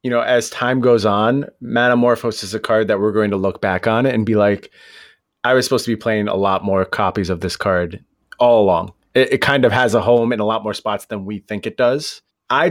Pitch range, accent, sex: 100-125 Hz, American, male